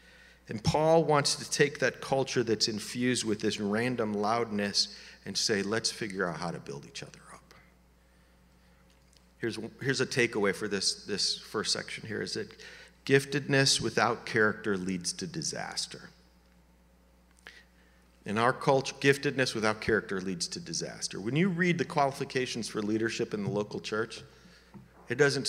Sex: male